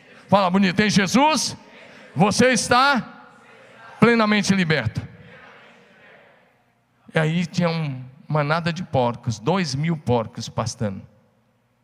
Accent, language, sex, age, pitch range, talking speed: Brazilian, Portuguese, male, 50-69, 125-190 Hz, 95 wpm